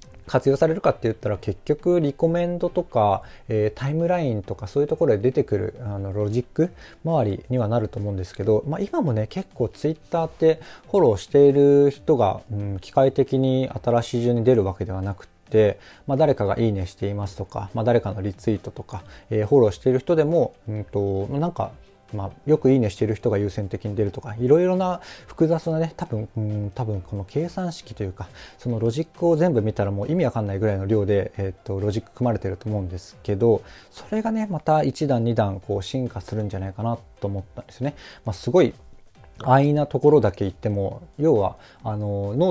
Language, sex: Japanese, male